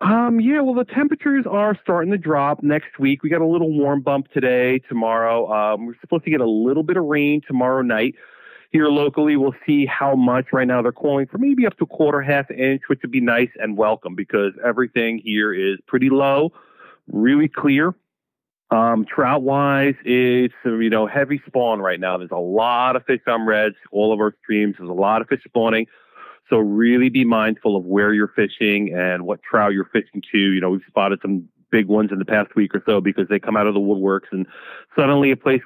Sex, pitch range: male, 110-145 Hz